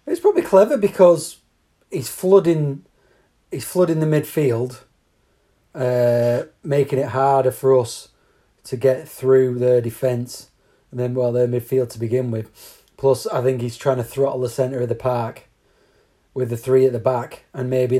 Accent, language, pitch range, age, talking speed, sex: British, English, 120-135 Hz, 30-49, 165 wpm, male